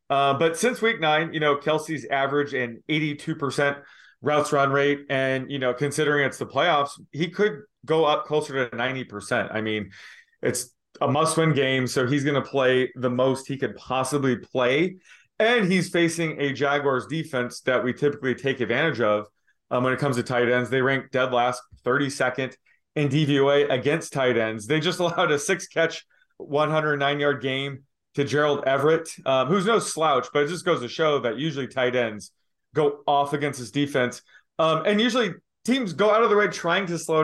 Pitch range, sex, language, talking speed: 125-155 Hz, male, English, 185 wpm